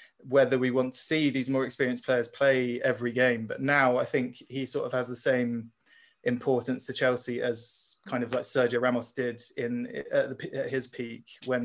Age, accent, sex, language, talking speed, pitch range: 20-39, British, male, English, 200 wpm, 120-130 Hz